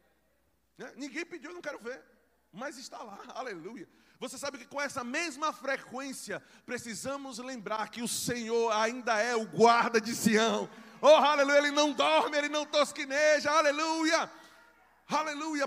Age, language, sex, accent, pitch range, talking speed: 20-39, Portuguese, male, Brazilian, 225-285 Hz, 145 wpm